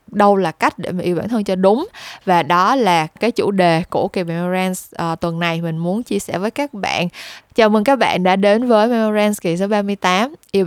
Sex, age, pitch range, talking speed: female, 10-29, 175-235 Hz, 225 wpm